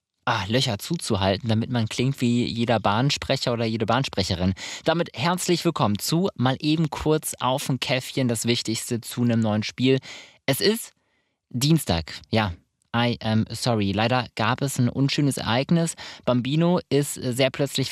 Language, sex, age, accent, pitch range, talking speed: German, male, 20-39, German, 120-145 Hz, 150 wpm